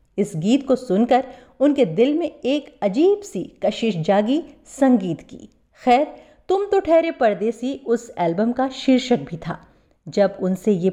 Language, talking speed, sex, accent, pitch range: Hindi, 155 wpm, female, native, 205-285 Hz